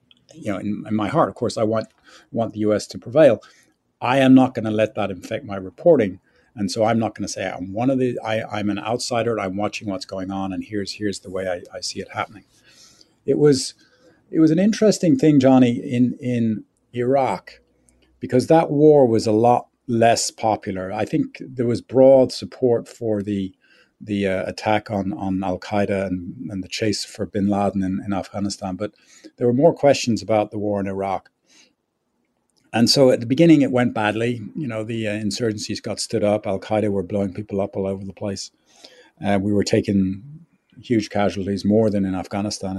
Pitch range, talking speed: 100-125 Hz, 210 wpm